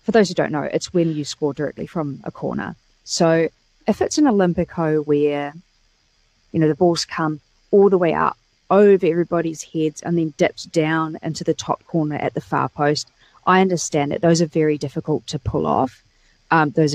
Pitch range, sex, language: 150-175 Hz, female, English